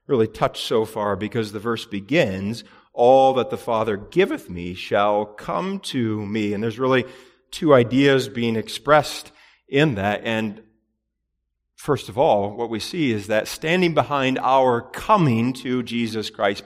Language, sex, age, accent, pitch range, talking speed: English, male, 40-59, American, 110-145 Hz, 155 wpm